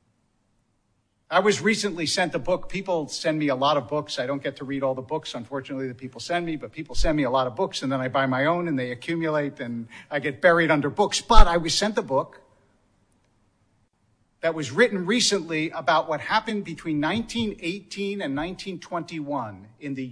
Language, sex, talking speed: English, male, 205 wpm